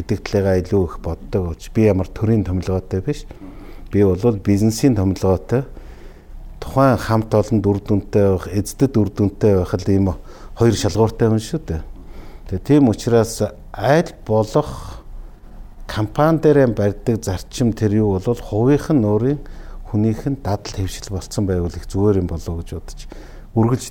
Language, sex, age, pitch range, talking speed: English, male, 60-79, 95-115 Hz, 125 wpm